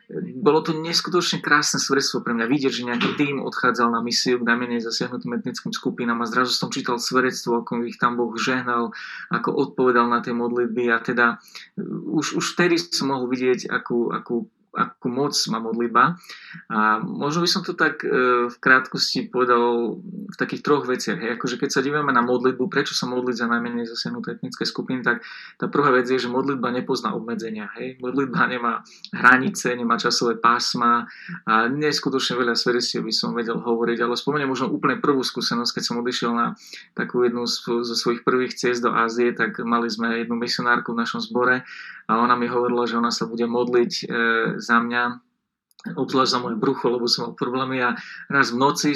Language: Slovak